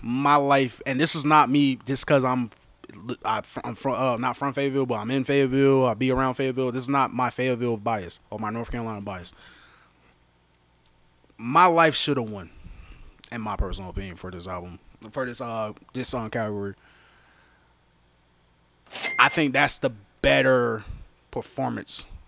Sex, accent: male, American